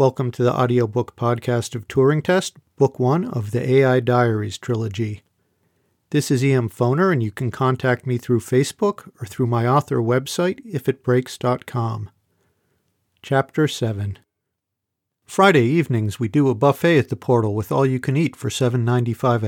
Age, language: 50-69, English